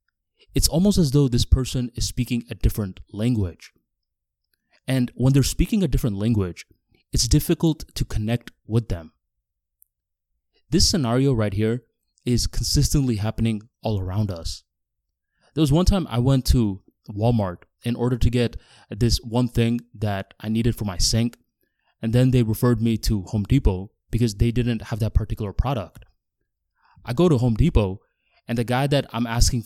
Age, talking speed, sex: 20-39, 165 wpm, male